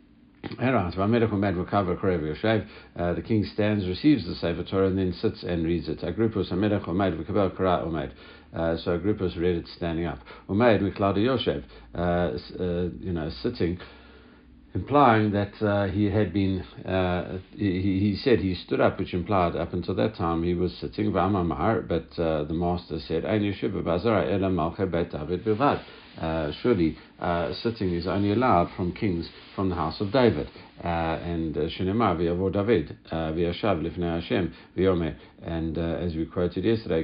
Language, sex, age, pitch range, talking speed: English, male, 60-79, 85-100 Hz, 120 wpm